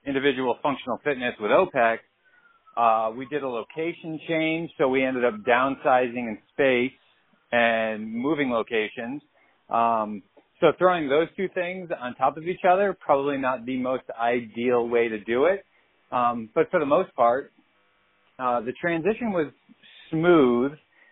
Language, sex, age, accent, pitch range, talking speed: English, male, 30-49, American, 120-145 Hz, 150 wpm